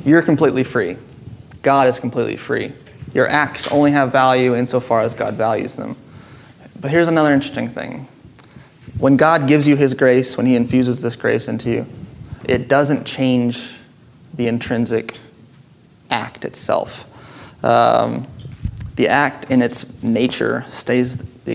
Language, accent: English, American